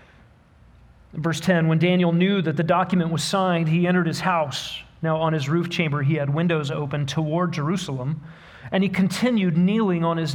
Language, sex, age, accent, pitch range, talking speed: English, male, 40-59, American, 150-180 Hz, 180 wpm